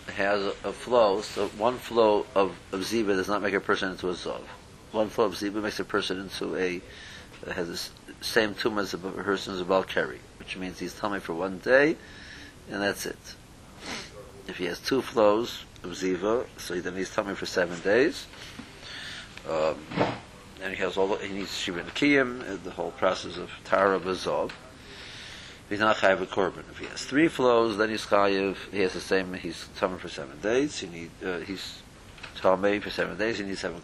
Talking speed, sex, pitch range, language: 195 wpm, male, 95-115 Hz, English